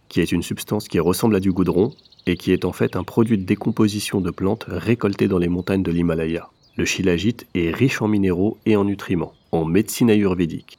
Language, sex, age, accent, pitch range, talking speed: French, male, 30-49, French, 90-105 Hz, 210 wpm